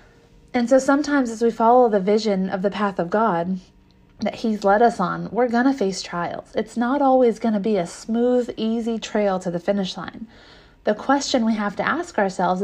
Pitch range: 185-225 Hz